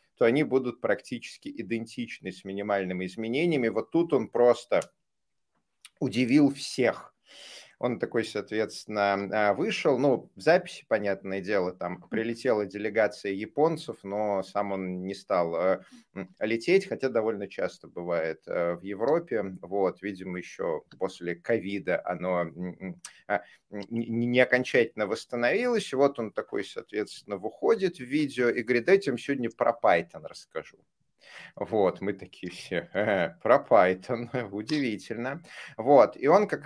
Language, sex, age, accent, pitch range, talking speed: Russian, male, 30-49, native, 95-125 Hz, 120 wpm